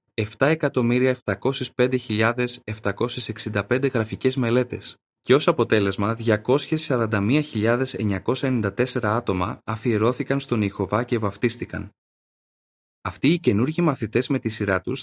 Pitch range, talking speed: 105-135 Hz, 85 wpm